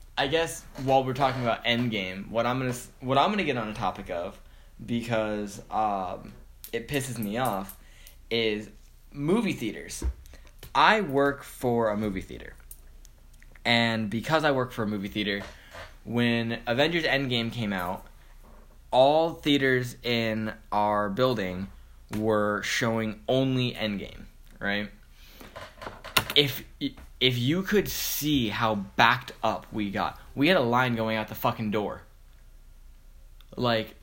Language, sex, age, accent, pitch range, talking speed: English, male, 10-29, American, 95-130 Hz, 140 wpm